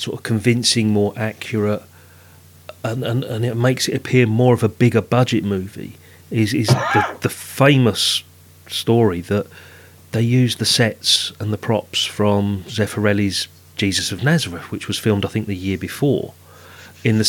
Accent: British